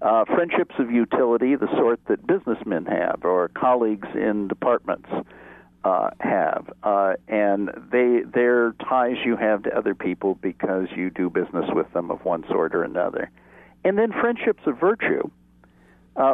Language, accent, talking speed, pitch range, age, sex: English, American, 150 wpm, 105-175 Hz, 60-79, male